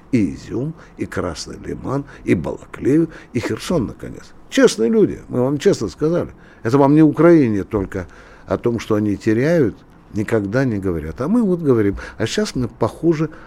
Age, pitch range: 60-79, 105-140 Hz